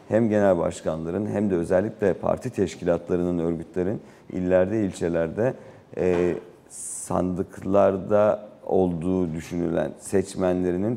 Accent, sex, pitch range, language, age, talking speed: native, male, 90-105 Hz, Turkish, 50-69, 90 wpm